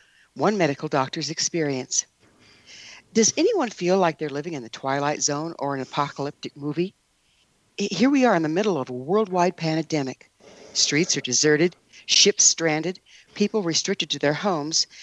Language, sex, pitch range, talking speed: English, female, 140-205 Hz, 150 wpm